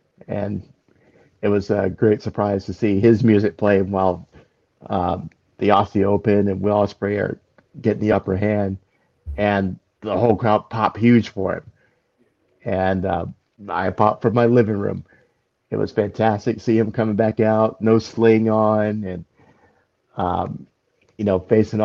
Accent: American